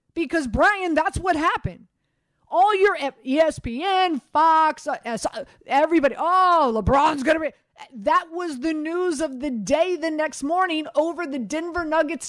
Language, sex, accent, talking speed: English, female, American, 140 wpm